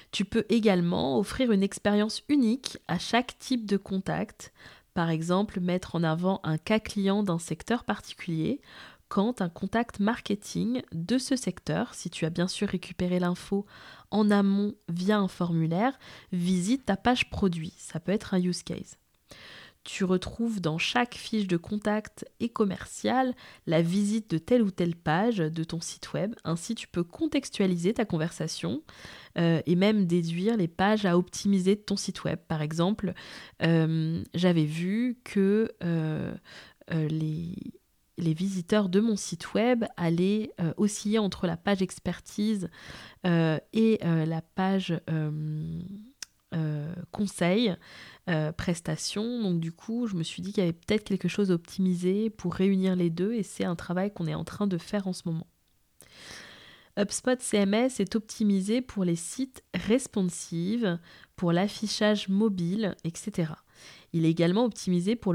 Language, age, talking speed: French, 20-39, 155 wpm